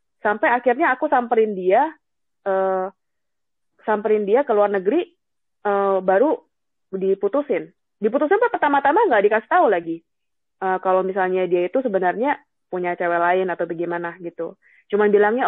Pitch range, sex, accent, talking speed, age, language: 180-245 Hz, female, native, 135 wpm, 20-39, Indonesian